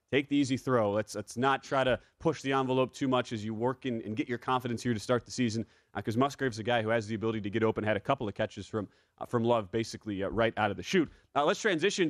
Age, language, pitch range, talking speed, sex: 30-49, English, 120-155 Hz, 290 wpm, male